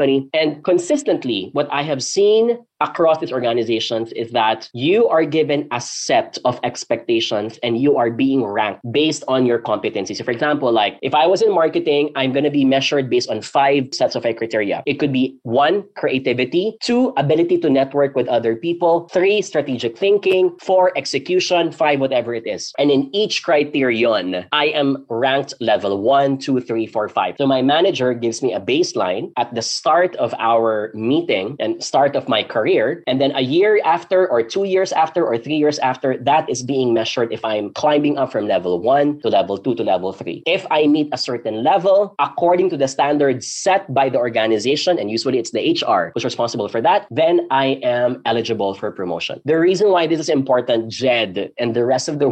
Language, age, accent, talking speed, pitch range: English, 20-39, Filipino, 195 wpm, 125-165 Hz